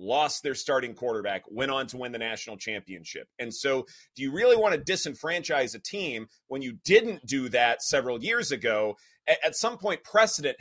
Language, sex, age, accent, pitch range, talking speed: English, male, 30-49, American, 130-210 Hz, 185 wpm